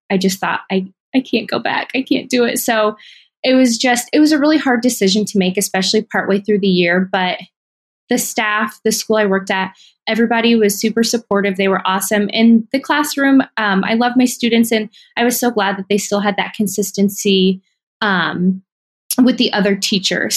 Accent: American